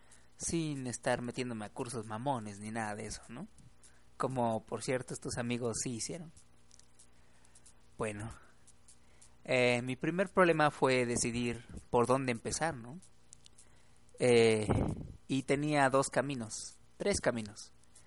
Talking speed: 120 wpm